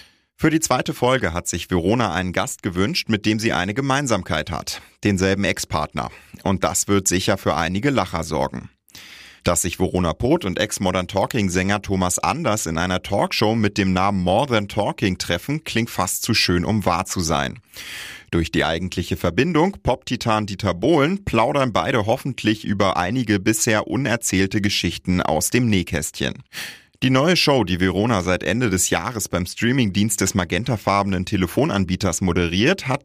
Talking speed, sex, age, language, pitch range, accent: 155 wpm, male, 30-49, German, 90-110 Hz, German